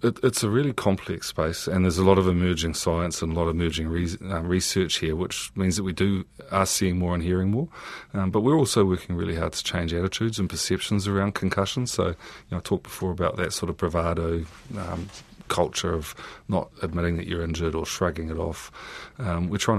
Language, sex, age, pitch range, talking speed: English, male, 30-49, 85-95 Hz, 220 wpm